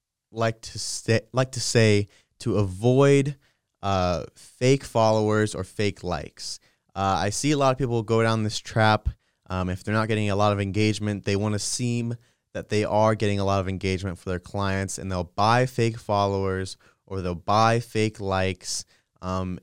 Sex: male